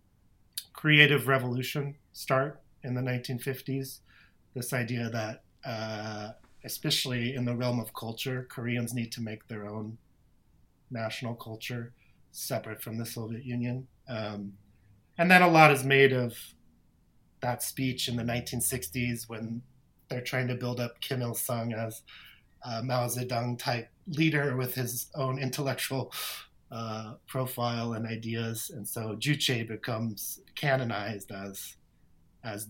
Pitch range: 115-140 Hz